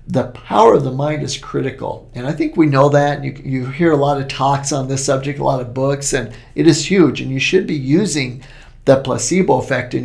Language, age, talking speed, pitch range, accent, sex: English, 50-69, 240 wpm, 125-150 Hz, American, male